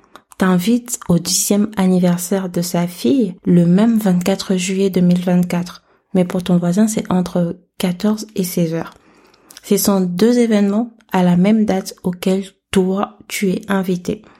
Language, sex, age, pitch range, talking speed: French, female, 30-49, 175-200 Hz, 145 wpm